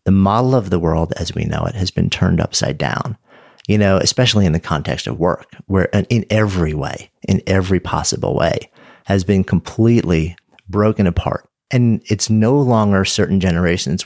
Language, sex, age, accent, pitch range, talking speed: English, male, 40-59, American, 85-110 Hz, 175 wpm